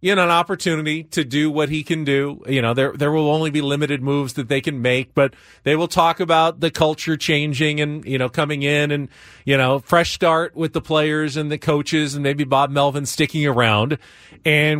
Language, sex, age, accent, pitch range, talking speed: English, male, 40-59, American, 125-160 Hz, 220 wpm